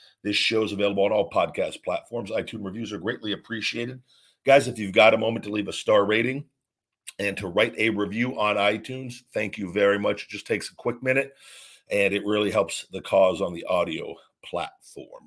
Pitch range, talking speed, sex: 100-120 Hz, 200 wpm, male